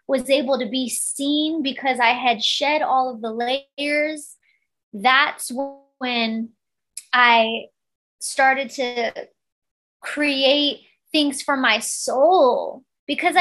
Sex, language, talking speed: female, English, 105 wpm